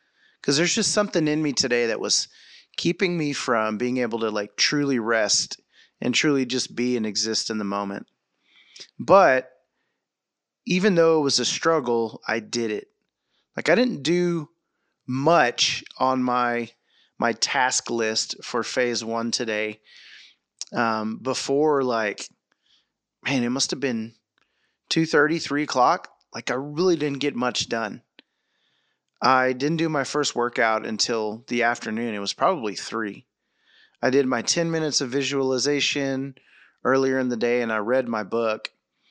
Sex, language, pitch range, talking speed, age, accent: male, English, 115-145 Hz, 150 wpm, 30-49, American